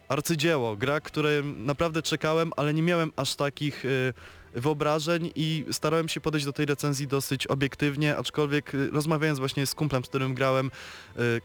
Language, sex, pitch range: Polish, male, 115-140 Hz